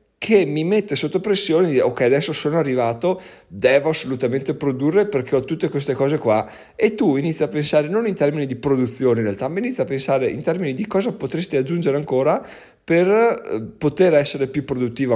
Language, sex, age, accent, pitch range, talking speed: Italian, male, 40-59, native, 115-145 Hz, 185 wpm